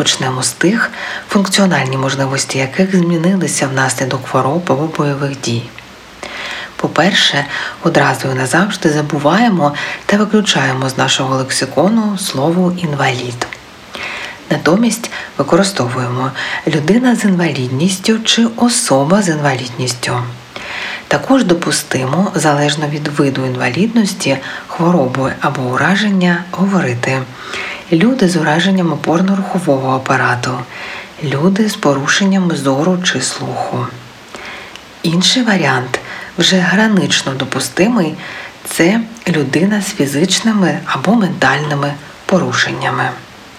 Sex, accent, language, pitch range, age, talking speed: female, native, Ukrainian, 135-190 Hz, 40-59, 90 wpm